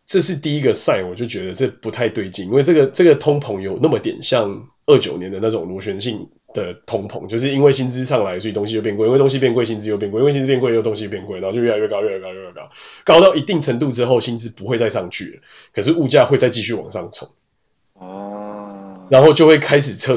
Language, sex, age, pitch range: Chinese, male, 20-39, 110-160 Hz